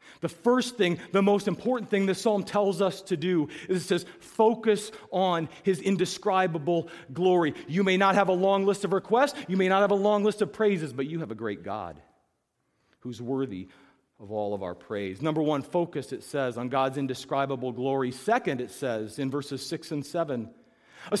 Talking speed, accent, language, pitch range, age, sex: 195 wpm, American, English, 140-230 Hz, 40-59, male